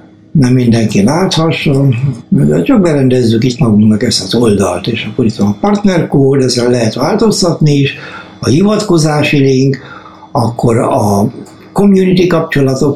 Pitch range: 115-155 Hz